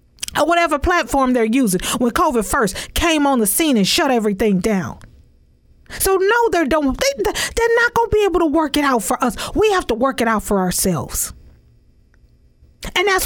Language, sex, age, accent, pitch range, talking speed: English, female, 40-59, American, 190-300 Hz, 190 wpm